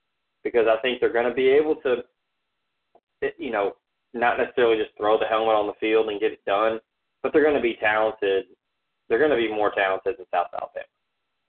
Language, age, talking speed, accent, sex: English, 20-39, 205 wpm, American, male